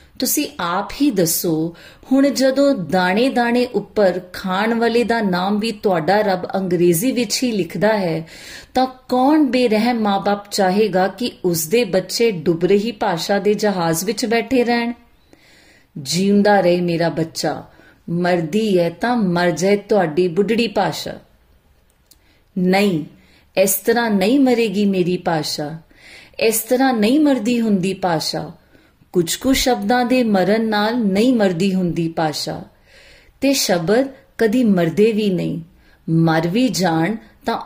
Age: 30-49